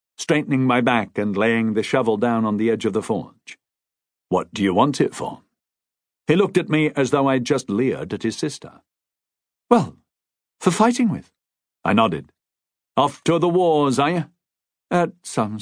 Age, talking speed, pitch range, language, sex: 50-69, 175 wpm, 105-155 Hz, English, male